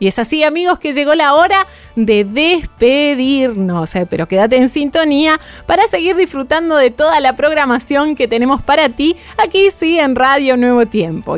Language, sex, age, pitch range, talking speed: Spanish, female, 20-39, 230-320 Hz, 165 wpm